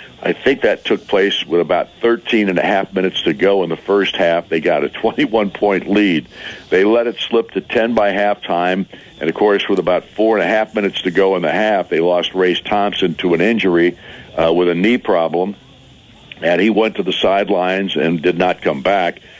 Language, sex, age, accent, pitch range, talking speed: English, male, 60-79, American, 90-110 Hz, 215 wpm